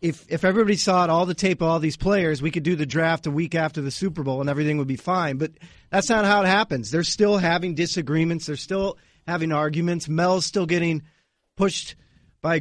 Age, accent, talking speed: 40-59, American, 225 wpm